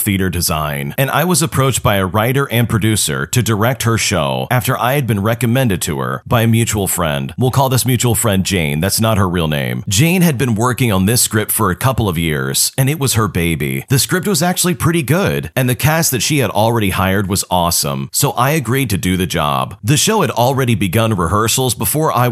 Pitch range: 100-135 Hz